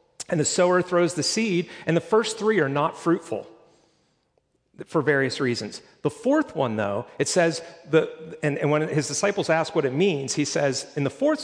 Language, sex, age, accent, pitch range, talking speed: English, male, 40-59, American, 140-180 Hz, 195 wpm